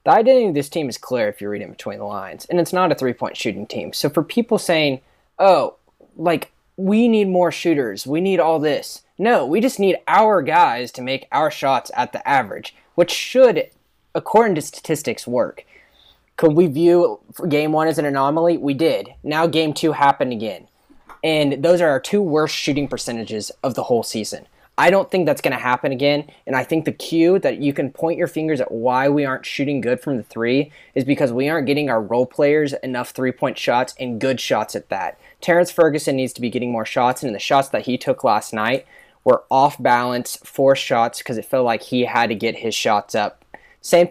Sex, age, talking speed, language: male, 10-29, 215 wpm, English